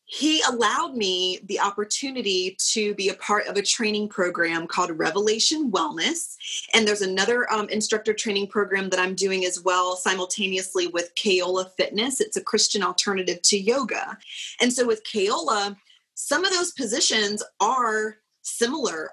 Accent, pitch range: American, 190-235 Hz